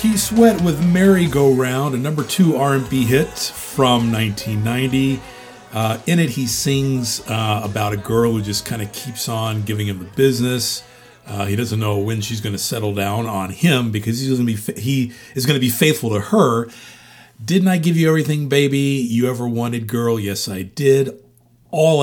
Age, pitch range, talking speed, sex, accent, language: 40-59, 110-145 Hz, 190 wpm, male, American, English